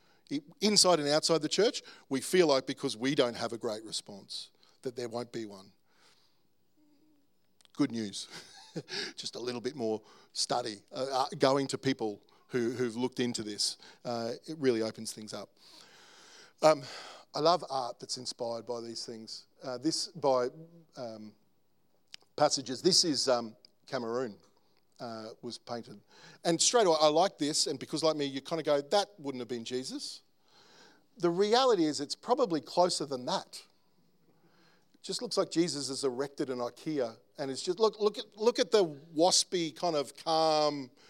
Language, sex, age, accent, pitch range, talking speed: English, male, 50-69, Australian, 120-170 Hz, 165 wpm